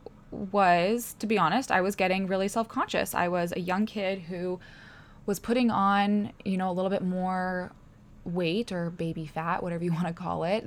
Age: 20-39